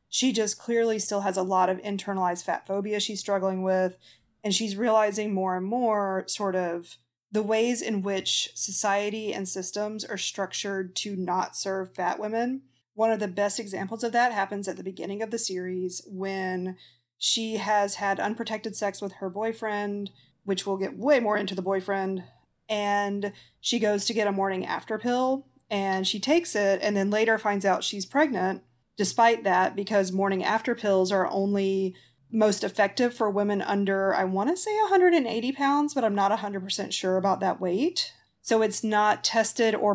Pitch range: 190-220 Hz